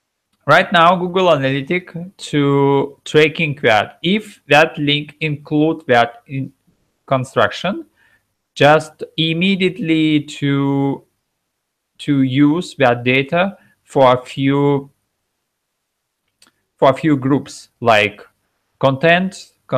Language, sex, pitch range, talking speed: Russian, male, 120-155 Hz, 95 wpm